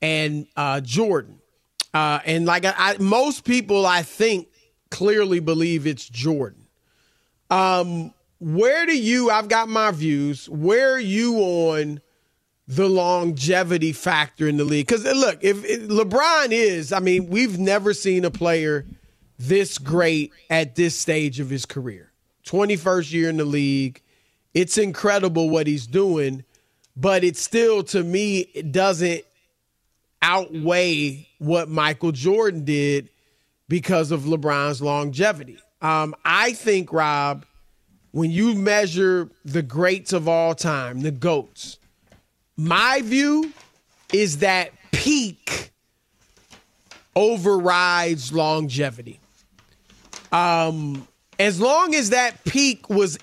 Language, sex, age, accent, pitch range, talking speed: English, male, 40-59, American, 155-205 Hz, 125 wpm